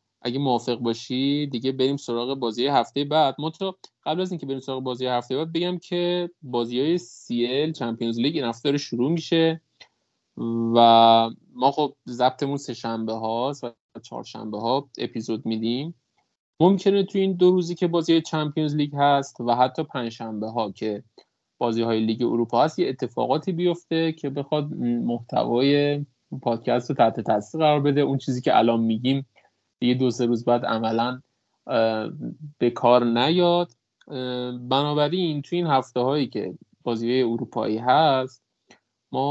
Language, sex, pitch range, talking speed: Persian, male, 115-150 Hz, 150 wpm